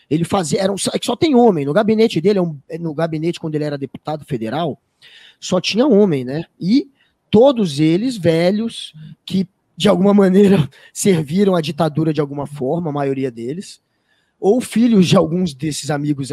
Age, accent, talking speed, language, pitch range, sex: 20-39, Brazilian, 165 wpm, Portuguese, 155-215 Hz, male